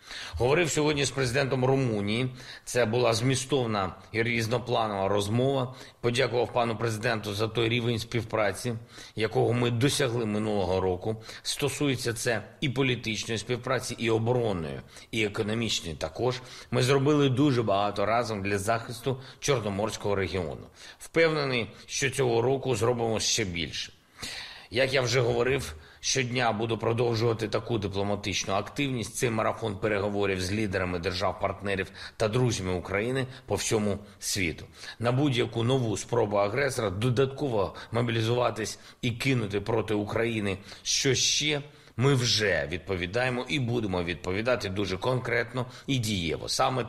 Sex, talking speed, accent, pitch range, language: male, 125 wpm, native, 105-130 Hz, Ukrainian